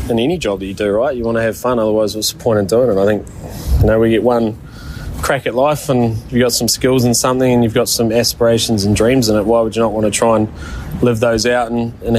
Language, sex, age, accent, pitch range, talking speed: English, male, 20-39, Australian, 90-115 Hz, 285 wpm